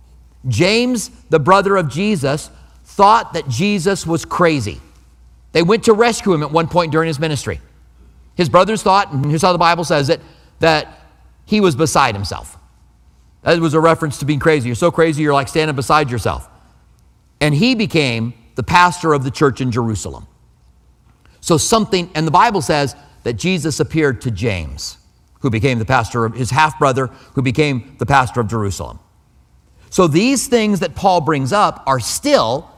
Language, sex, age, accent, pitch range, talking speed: English, male, 50-69, American, 120-180 Hz, 170 wpm